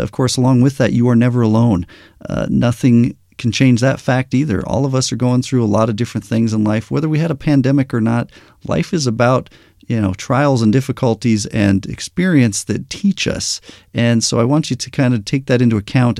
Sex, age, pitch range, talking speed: male, 40-59, 105-130 Hz, 225 wpm